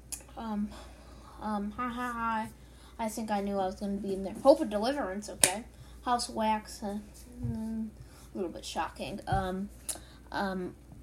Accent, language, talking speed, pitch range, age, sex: American, English, 175 wpm, 185-230 Hz, 10-29, female